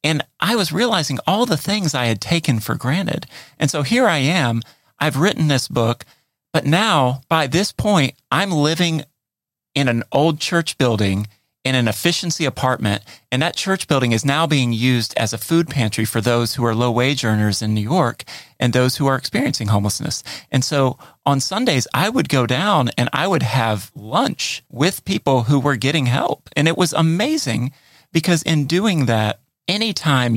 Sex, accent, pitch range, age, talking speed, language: male, American, 115-155 Hz, 40-59, 185 wpm, English